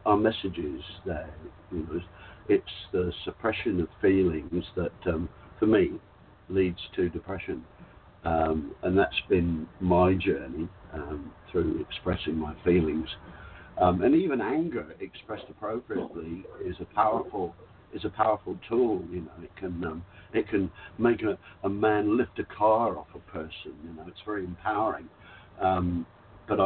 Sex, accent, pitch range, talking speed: male, British, 85-105 Hz, 145 wpm